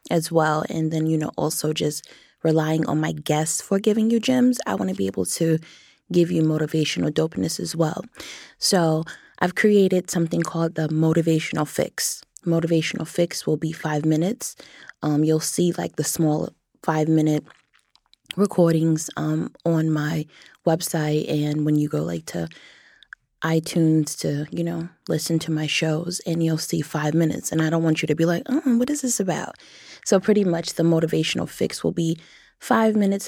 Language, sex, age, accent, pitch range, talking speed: English, female, 20-39, American, 155-180 Hz, 175 wpm